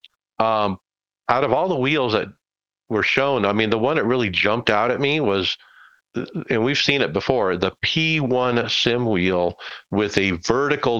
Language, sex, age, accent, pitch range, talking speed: English, male, 50-69, American, 90-120 Hz, 180 wpm